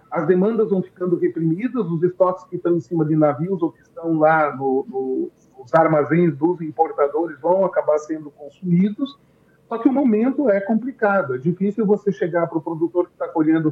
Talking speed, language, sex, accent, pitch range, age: 190 wpm, Portuguese, male, Brazilian, 155-195 Hz, 40-59